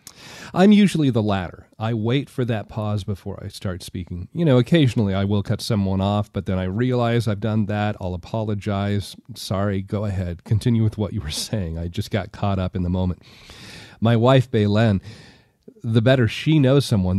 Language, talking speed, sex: English, 190 wpm, male